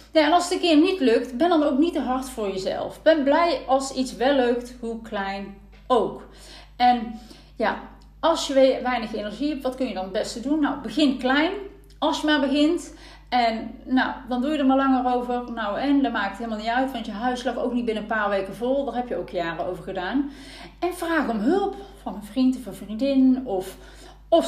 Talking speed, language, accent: 225 wpm, Dutch, Dutch